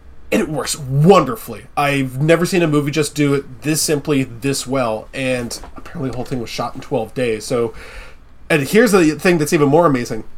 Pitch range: 120-160 Hz